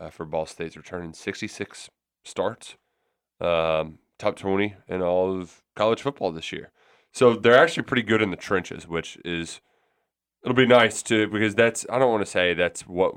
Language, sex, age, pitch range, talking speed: English, male, 30-49, 90-115 Hz, 180 wpm